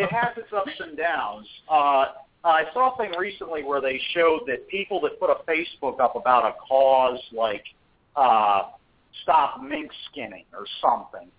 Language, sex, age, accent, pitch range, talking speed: English, male, 50-69, American, 130-180 Hz, 170 wpm